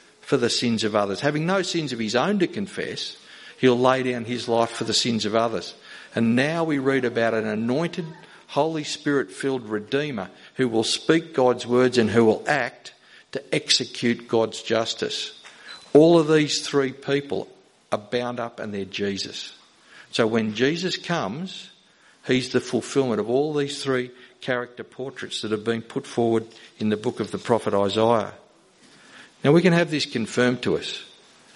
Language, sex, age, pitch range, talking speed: English, male, 50-69, 115-140 Hz, 175 wpm